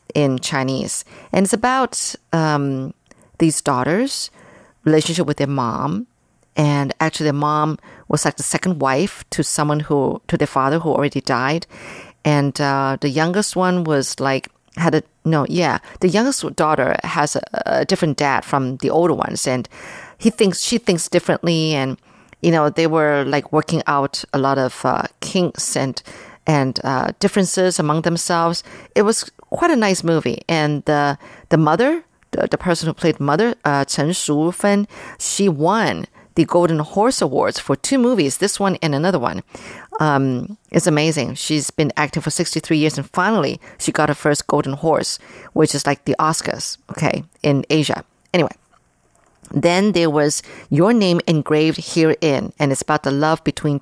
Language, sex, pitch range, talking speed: English, female, 145-180 Hz, 165 wpm